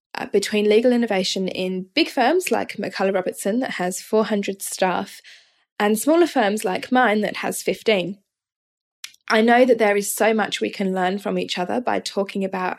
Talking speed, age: 170 wpm, 10-29